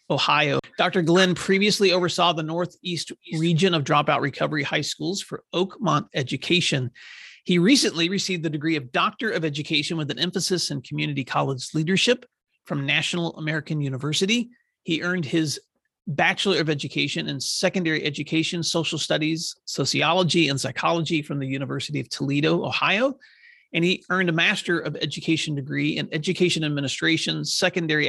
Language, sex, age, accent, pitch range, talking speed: English, male, 40-59, American, 150-180 Hz, 145 wpm